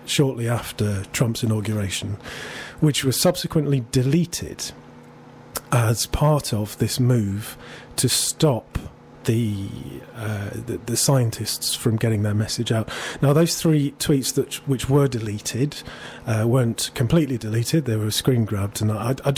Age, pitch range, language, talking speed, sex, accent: 40-59, 110-135 Hz, English, 135 wpm, male, British